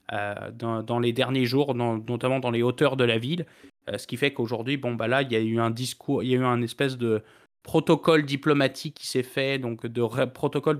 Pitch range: 120-140 Hz